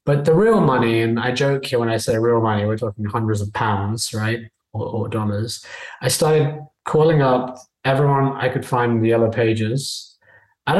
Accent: British